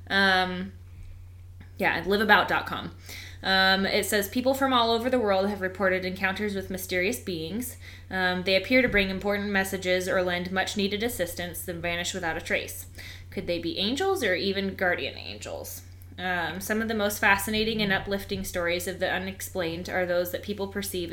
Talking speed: 170 wpm